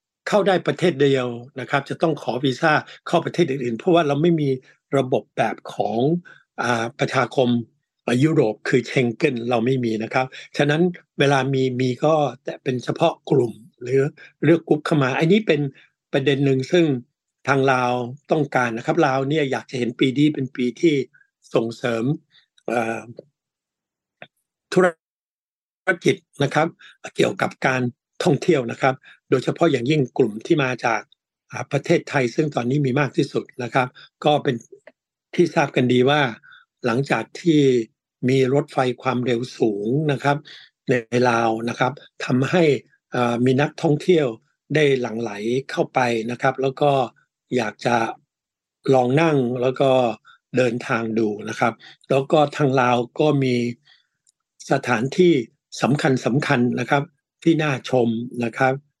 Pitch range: 125-150 Hz